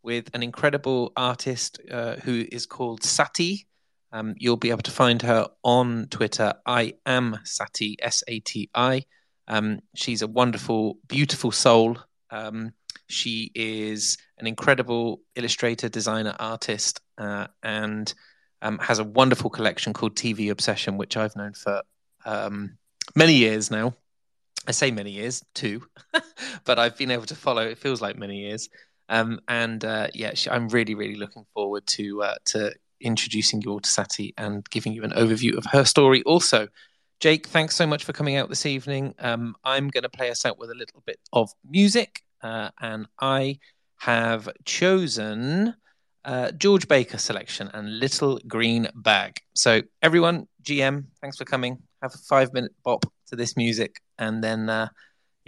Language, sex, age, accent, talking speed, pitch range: English, male, 20-39, British, 165 wpm, 110-135 Hz